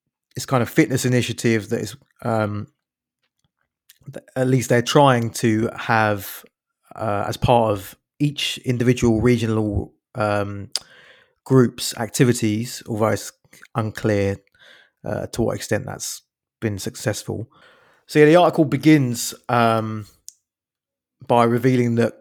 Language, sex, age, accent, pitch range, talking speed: English, male, 20-39, British, 105-125 Hz, 115 wpm